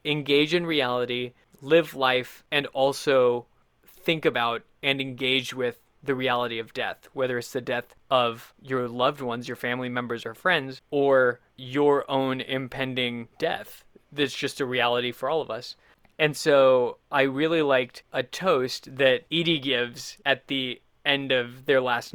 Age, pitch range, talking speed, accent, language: 20-39, 125-145 Hz, 155 wpm, American, English